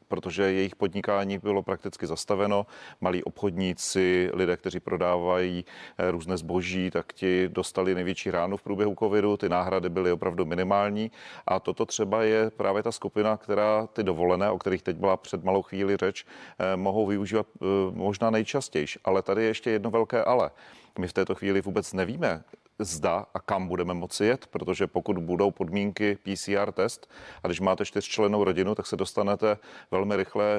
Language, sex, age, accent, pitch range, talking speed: Czech, male, 40-59, native, 95-105 Hz, 165 wpm